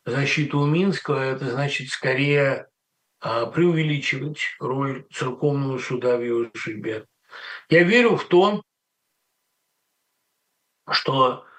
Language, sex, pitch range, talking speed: Russian, male, 125-160 Hz, 90 wpm